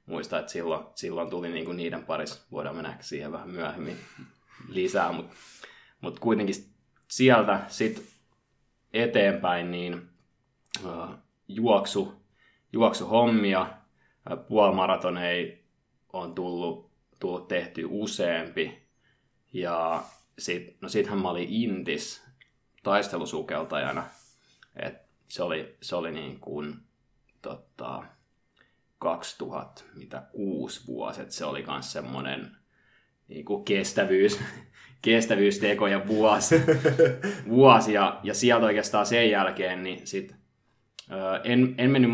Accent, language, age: native, Finnish, 20-39